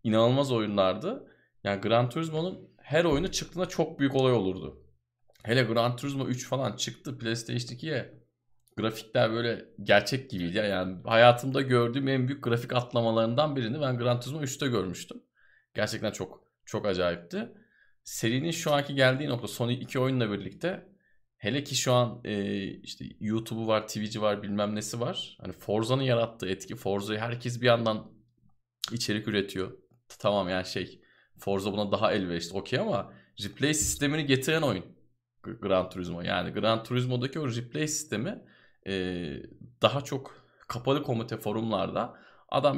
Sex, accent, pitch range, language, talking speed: male, native, 105-135 Hz, Turkish, 140 wpm